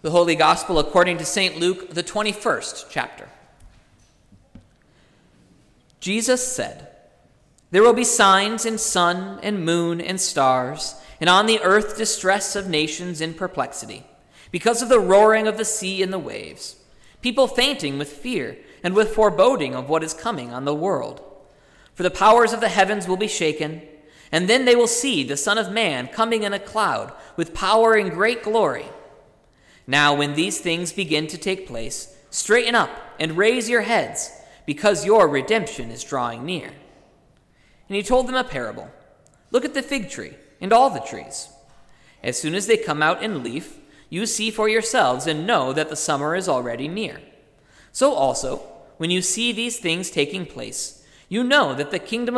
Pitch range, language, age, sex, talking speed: 155-225 Hz, English, 40-59, male, 175 wpm